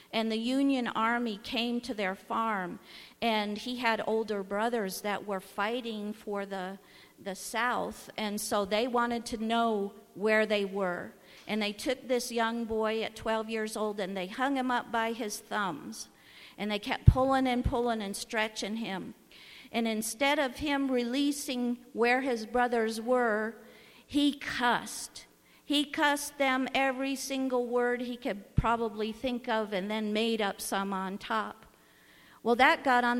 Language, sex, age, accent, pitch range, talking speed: English, female, 50-69, American, 210-245 Hz, 160 wpm